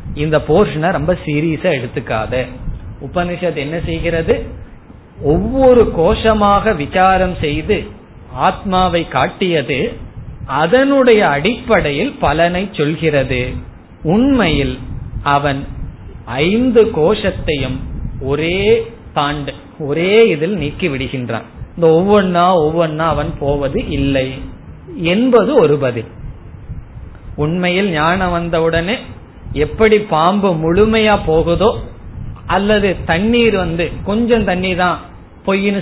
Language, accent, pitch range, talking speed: Tamil, native, 145-205 Hz, 60 wpm